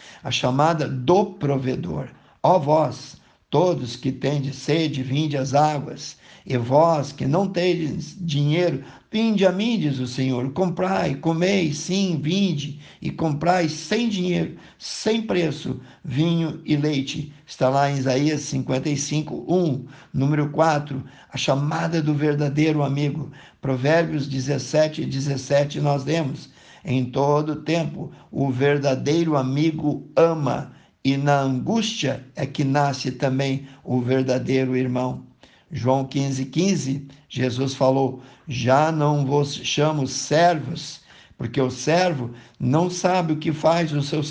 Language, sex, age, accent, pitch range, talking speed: Portuguese, male, 60-79, Brazilian, 135-165 Hz, 125 wpm